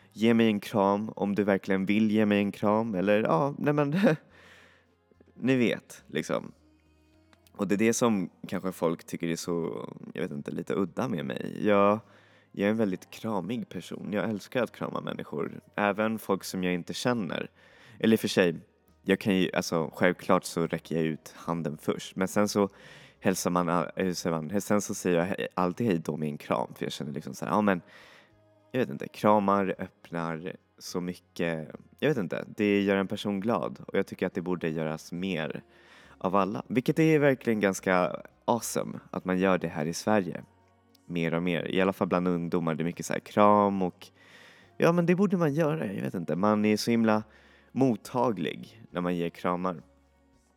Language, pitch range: Swedish, 85-105 Hz